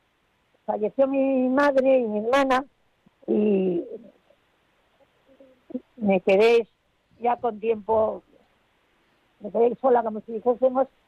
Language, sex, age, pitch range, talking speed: Spanish, female, 50-69, 205-255 Hz, 95 wpm